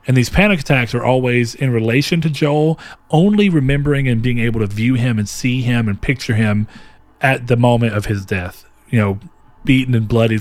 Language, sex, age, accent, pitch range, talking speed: English, male, 40-59, American, 105-130 Hz, 200 wpm